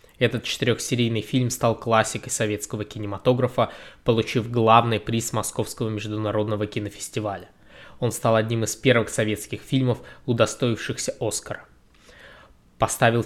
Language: Russian